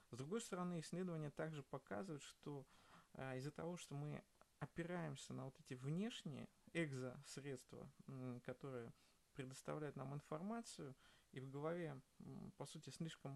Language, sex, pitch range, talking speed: Russian, male, 130-170 Hz, 120 wpm